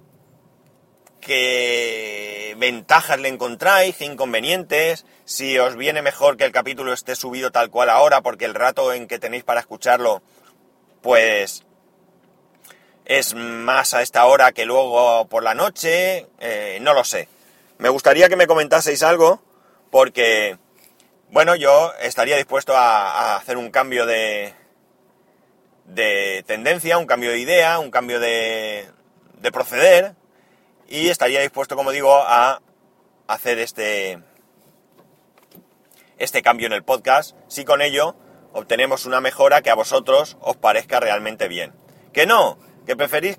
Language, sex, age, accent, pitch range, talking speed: Spanish, male, 30-49, Spanish, 125-190 Hz, 135 wpm